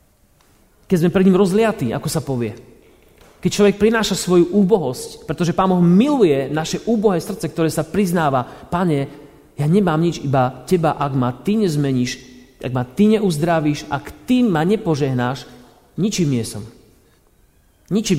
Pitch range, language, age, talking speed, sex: 135-200 Hz, Slovak, 30-49, 150 wpm, male